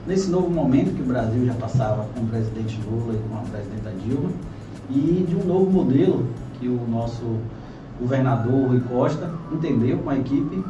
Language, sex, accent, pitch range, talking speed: Portuguese, male, Brazilian, 125-150 Hz, 180 wpm